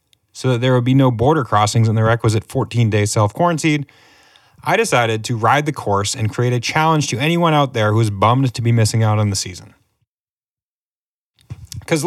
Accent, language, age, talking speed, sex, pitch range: American, English, 30-49, 190 wpm, male, 110-145 Hz